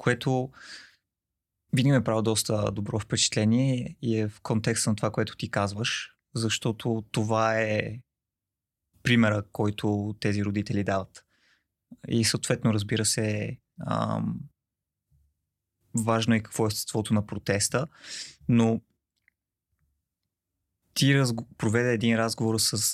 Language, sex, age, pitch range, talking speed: Bulgarian, male, 20-39, 105-115 Hz, 105 wpm